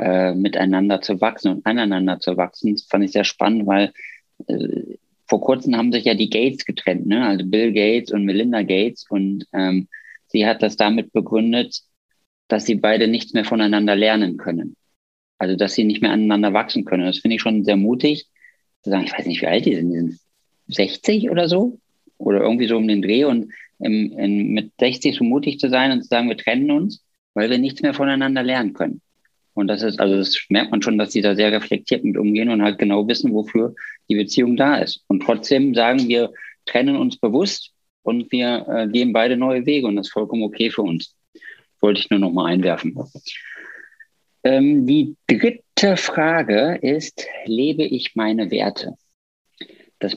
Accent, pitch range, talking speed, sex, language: German, 100-125 Hz, 195 wpm, male, German